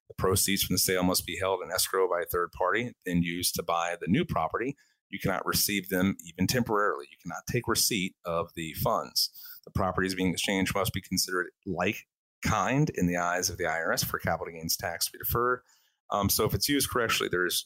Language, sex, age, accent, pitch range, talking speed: English, male, 30-49, American, 90-110 Hz, 215 wpm